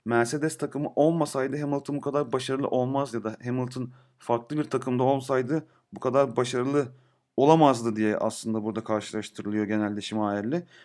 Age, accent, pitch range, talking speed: 30-49, native, 120-150 Hz, 140 wpm